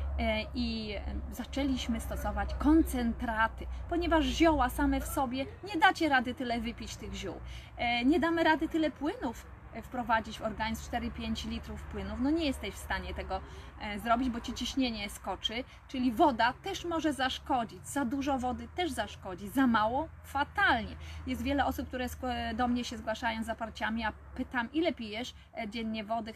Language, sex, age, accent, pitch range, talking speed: Polish, female, 20-39, native, 215-270 Hz, 155 wpm